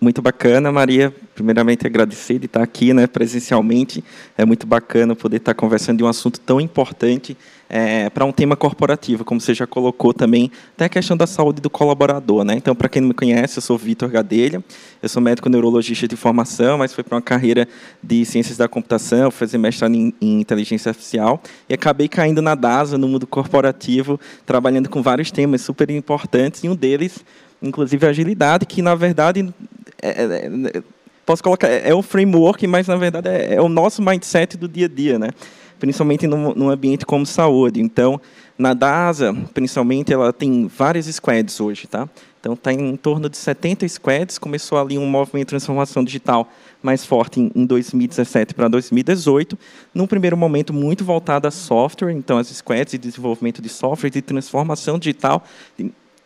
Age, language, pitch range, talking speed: 20-39, Portuguese, 120-150 Hz, 180 wpm